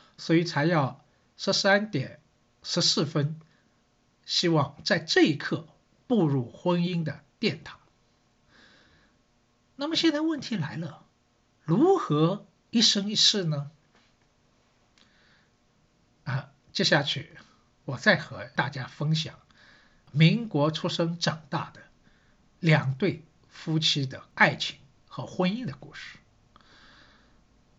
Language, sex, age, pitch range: Chinese, male, 60-79, 140-195 Hz